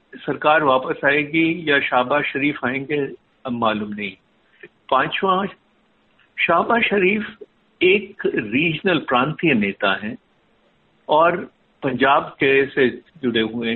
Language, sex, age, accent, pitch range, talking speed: Hindi, male, 60-79, native, 130-195 Hz, 105 wpm